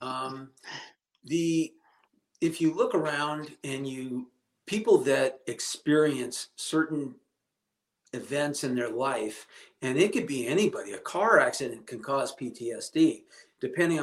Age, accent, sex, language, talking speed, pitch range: 50-69, American, male, English, 120 wpm, 130-170 Hz